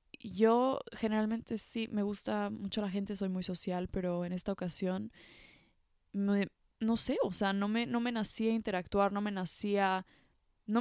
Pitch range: 190-220 Hz